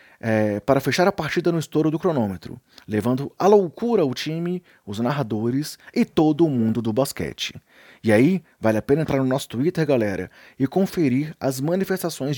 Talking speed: 175 wpm